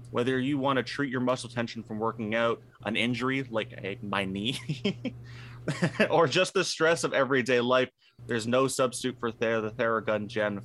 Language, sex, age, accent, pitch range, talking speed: English, male, 30-49, American, 110-130 Hz, 180 wpm